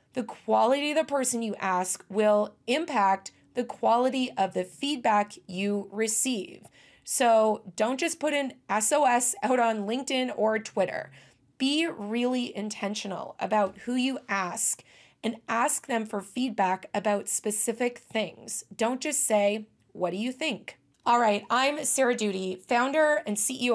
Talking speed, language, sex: 145 wpm, English, female